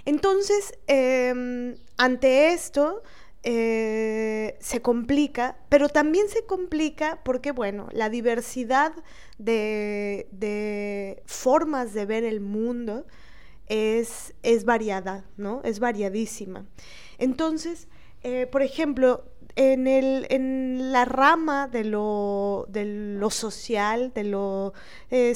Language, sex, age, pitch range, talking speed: Spanish, female, 20-39, 215-270 Hz, 100 wpm